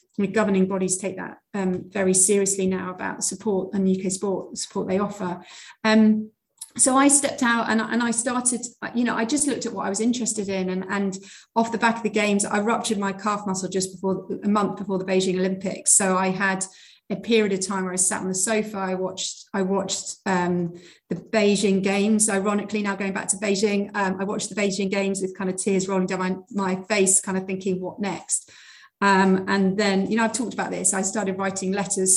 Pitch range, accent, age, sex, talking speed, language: 190-210 Hz, British, 30-49, female, 220 wpm, English